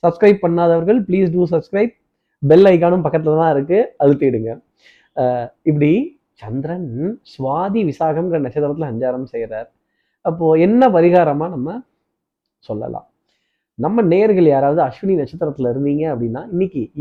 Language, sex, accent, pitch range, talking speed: Tamil, male, native, 135-180 Hz, 110 wpm